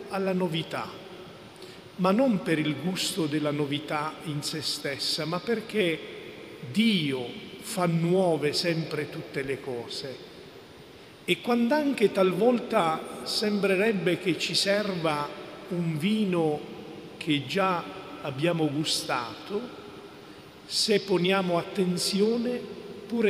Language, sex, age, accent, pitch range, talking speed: Italian, male, 50-69, native, 155-190 Hz, 100 wpm